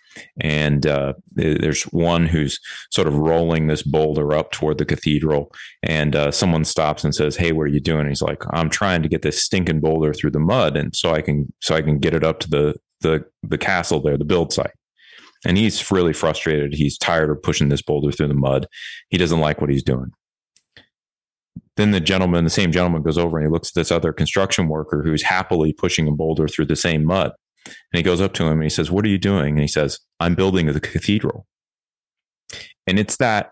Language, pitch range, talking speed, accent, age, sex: English, 75-85 Hz, 220 wpm, American, 30-49, male